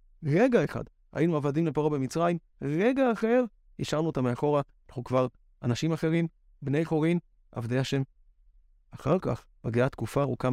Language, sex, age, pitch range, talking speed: Hebrew, male, 30-49, 125-185 Hz, 135 wpm